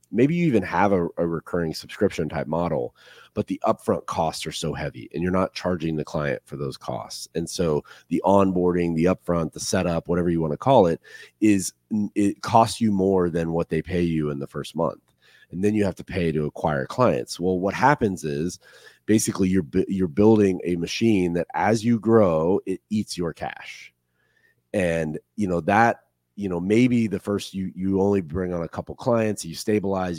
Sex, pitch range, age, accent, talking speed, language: male, 80-100 Hz, 30-49, American, 200 wpm, English